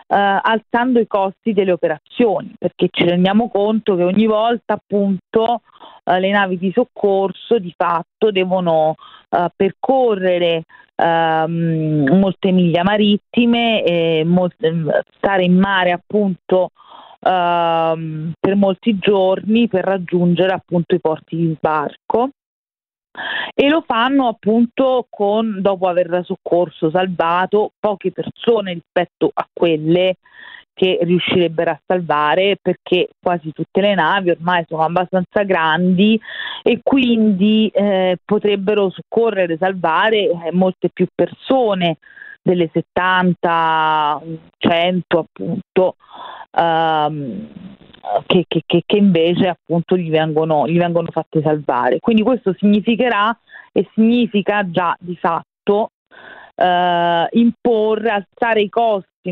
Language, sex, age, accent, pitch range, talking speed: Italian, female, 40-59, native, 170-210 Hz, 115 wpm